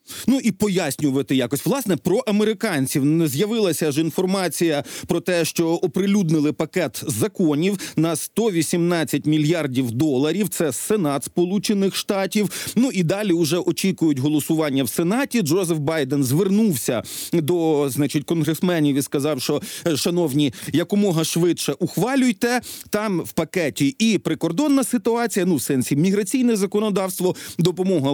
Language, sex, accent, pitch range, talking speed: Ukrainian, male, native, 150-195 Hz, 120 wpm